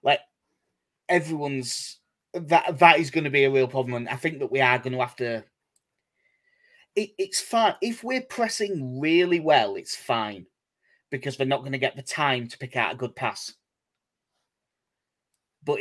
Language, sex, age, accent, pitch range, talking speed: English, male, 30-49, British, 130-175 Hz, 175 wpm